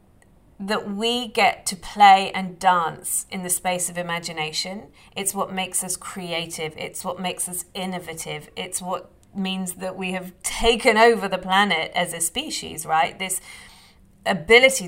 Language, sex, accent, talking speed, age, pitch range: English, female, British, 155 wpm, 30-49, 175-210 Hz